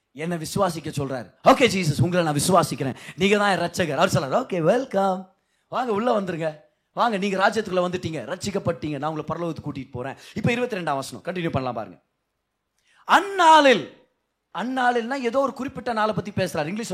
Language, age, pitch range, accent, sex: Tamil, 30-49, 185-270 Hz, native, male